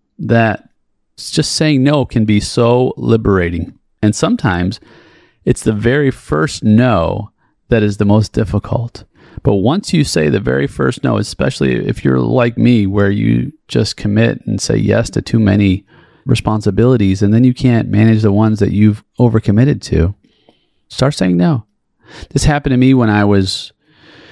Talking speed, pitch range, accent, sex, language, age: 160 wpm, 100-125 Hz, American, male, English, 30-49